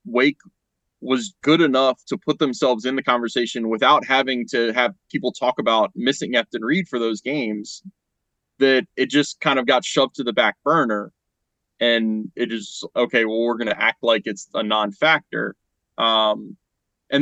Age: 20-39